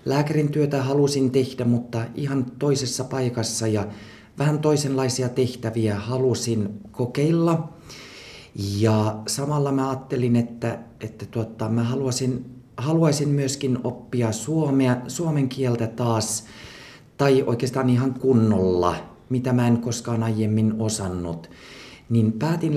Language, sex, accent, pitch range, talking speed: Finnish, male, native, 115-145 Hz, 110 wpm